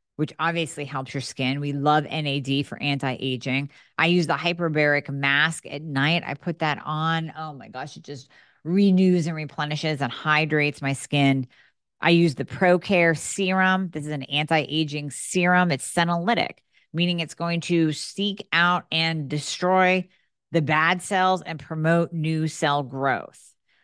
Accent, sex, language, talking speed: American, female, English, 155 wpm